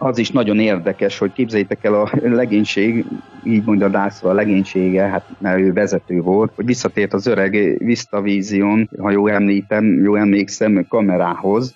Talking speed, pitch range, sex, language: 155 wpm, 100-110 Hz, male, Hungarian